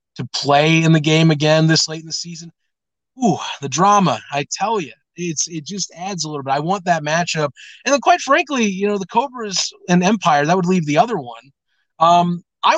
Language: English